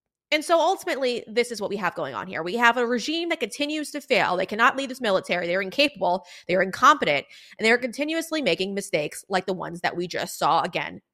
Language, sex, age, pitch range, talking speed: English, female, 20-39, 195-275 Hz, 230 wpm